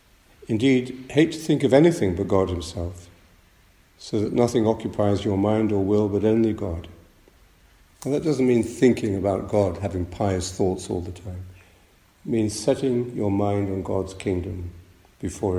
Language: English